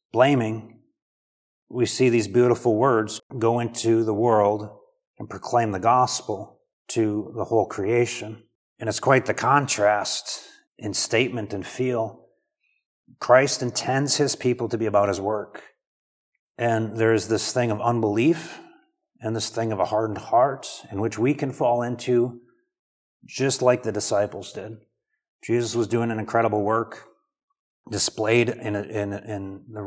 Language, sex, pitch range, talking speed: English, male, 110-125 Hz, 150 wpm